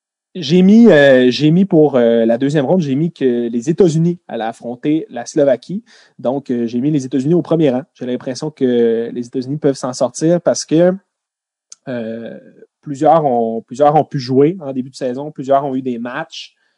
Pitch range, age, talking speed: 120-155 Hz, 30-49, 195 wpm